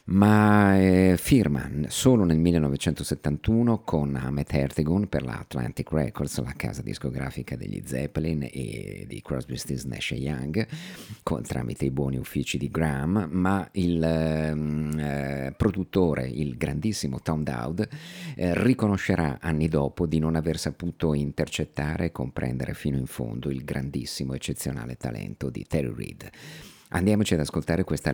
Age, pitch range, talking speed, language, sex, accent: 50-69, 70-90 Hz, 135 wpm, Italian, male, native